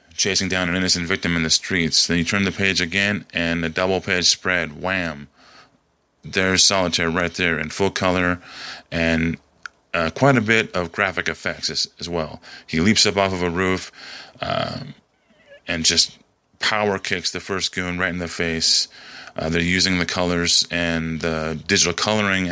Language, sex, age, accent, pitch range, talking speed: English, male, 30-49, American, 85-95 Hz, 175 wpm